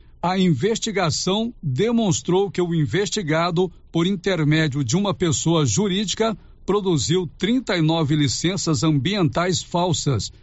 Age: 60-79